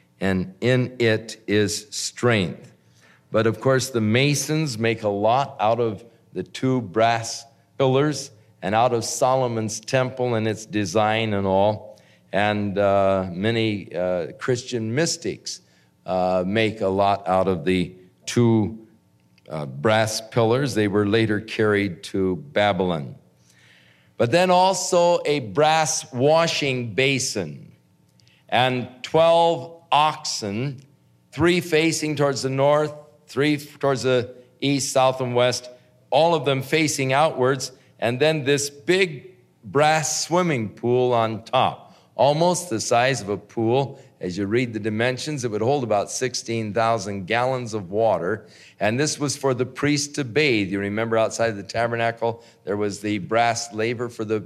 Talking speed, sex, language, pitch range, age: 140 wpm, male, English, 105-140 Hz, 50-69